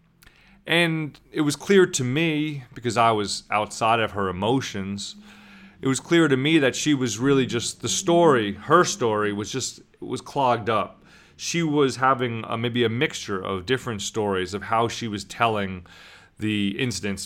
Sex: male